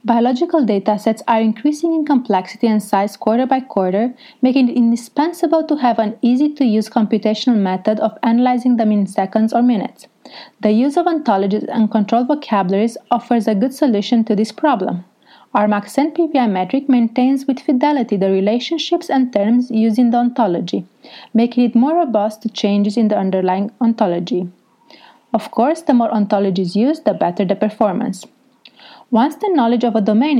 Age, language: 30-49, English